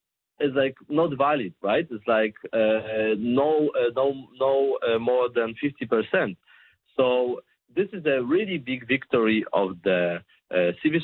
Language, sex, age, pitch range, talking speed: Danish, male, 40-59, 115-155 Hz, 160 wpm